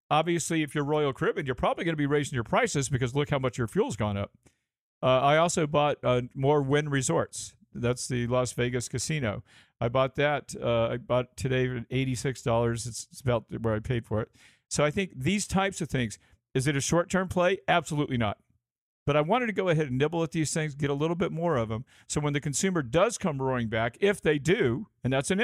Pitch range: 115-150 Hz